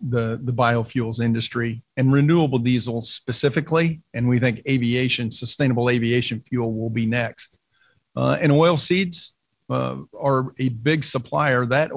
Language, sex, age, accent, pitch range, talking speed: English, male, 50-69, American, 120-145 Hz, 140 wpm